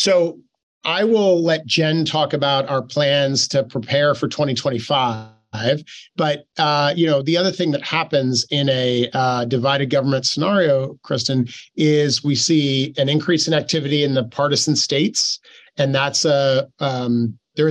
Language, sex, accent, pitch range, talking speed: English, male, American, 125-150 Hz, 155 wpm